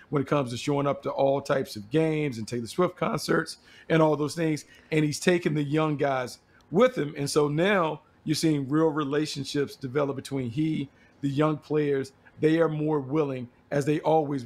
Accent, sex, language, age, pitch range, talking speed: American, male, English, 50-69, 135-160 Hz, 195 wpm